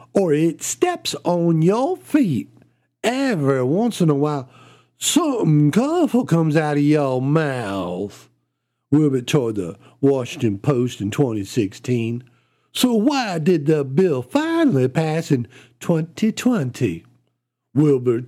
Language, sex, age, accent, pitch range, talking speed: English, male, 50-69, American, 125-200 Hz, 115 wpm